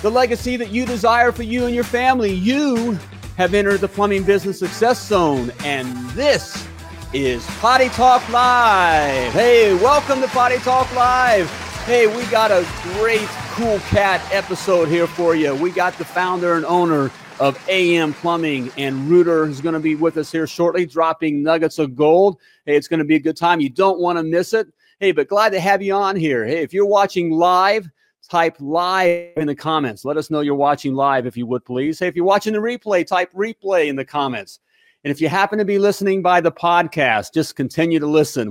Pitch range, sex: 145-200 Hz, male